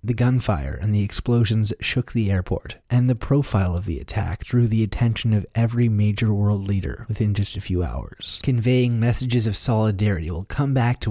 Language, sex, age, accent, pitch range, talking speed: English, male, 30-49, American, 105-125 Hz, 190 wpm